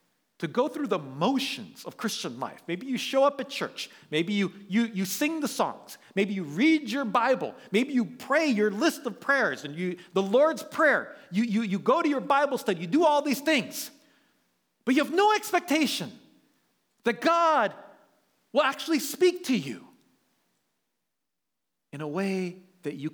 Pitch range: 195-285 Hz